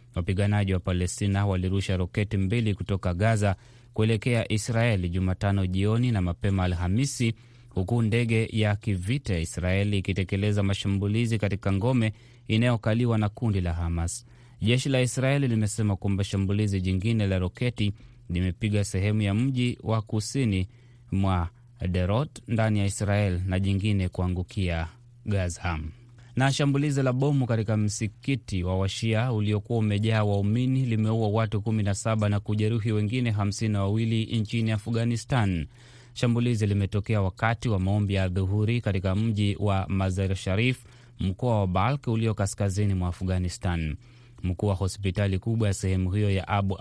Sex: male